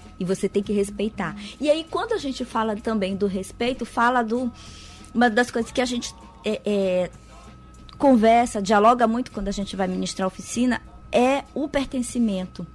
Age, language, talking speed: 20-39, Portuguese, 170 wpm